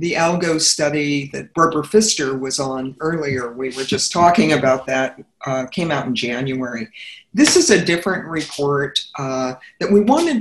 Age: 50-69